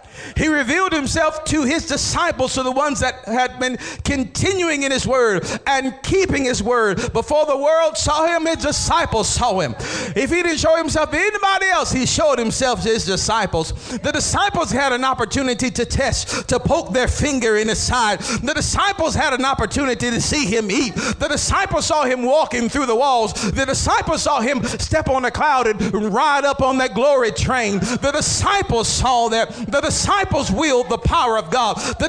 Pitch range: 255-370 Hz